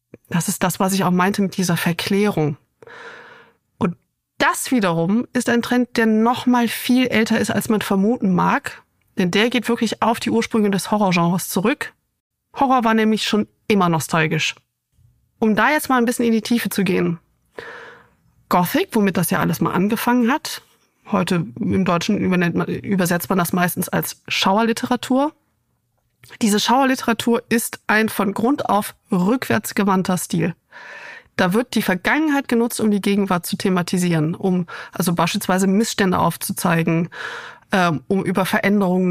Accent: German